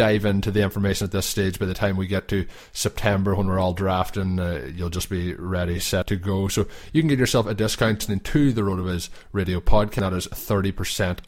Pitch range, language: 95-110 Hz, English